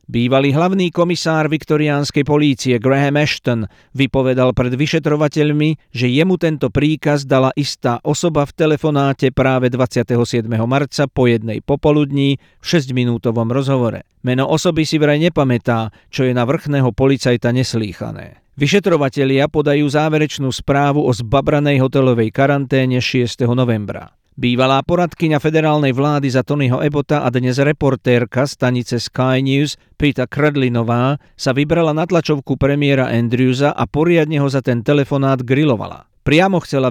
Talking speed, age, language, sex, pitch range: 130 wpm, 50-69, Slovak, male, 125-150 Hz